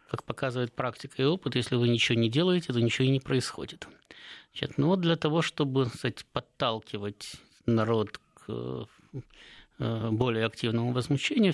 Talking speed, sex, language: 145 wpm, male, Russian